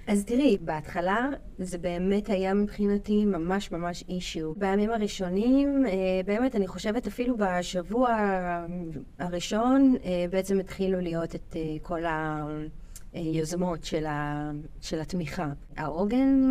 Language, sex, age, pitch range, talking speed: Hebrew, female, 30-49, 160-210 Hz, 100 wpm